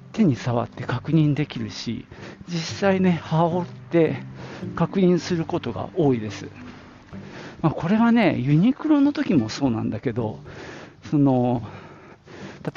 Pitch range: 115-165 Hz